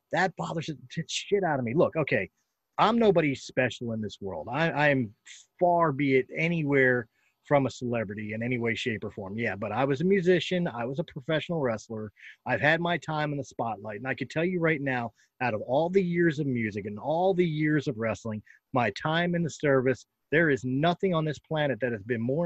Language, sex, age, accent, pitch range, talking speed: English, male, 30-49, American, 120-155 Hz, 220 wpm